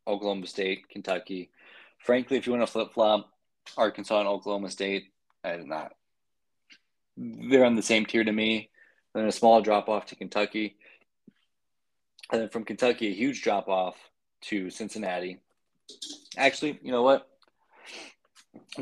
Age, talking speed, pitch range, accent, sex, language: 20-39, 145 wpm, 95-115 Hz, American, male, English